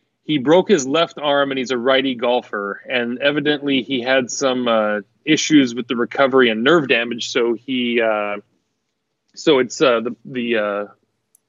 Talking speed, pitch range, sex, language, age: 165 wpm, 115-140 Hz, male, English, 30-49